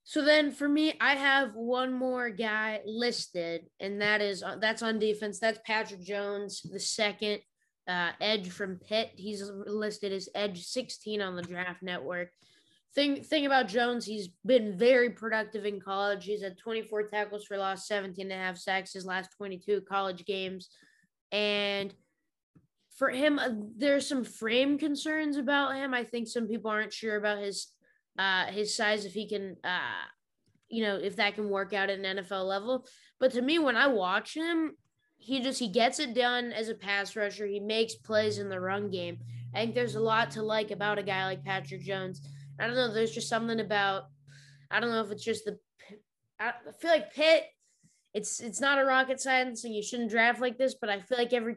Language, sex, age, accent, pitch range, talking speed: English, female, 20-39, American, 195-240 Hz, 195 wpm